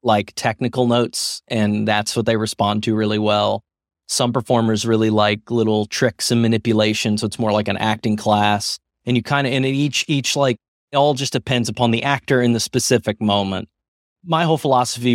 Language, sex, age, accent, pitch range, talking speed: English, male, 30-49, American, 110-130 Hz, 190 wpm